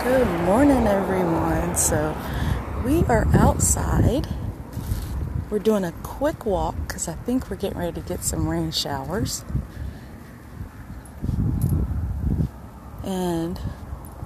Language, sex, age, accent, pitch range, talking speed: English, female, 30-49, American, 160-200 Hz, 100 wpm